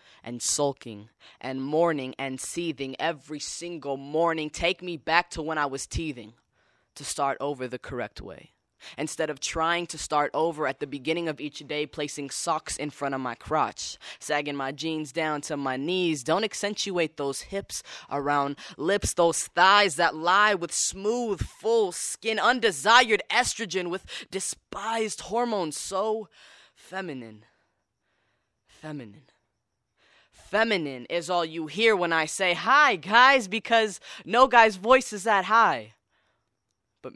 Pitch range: 135-185 Hz